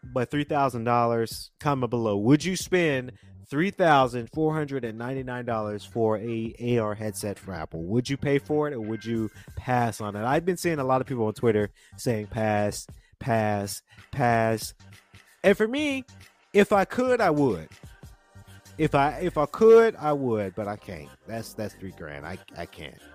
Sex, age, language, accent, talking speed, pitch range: male, 30-49, English, American, 185 wpm, 105-145 Hz